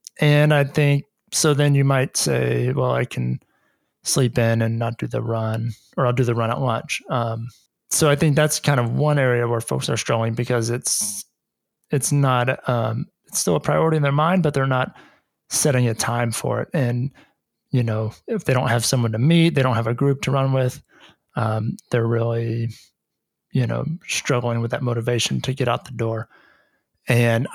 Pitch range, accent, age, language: 115-140 Hz, American, 30-49, English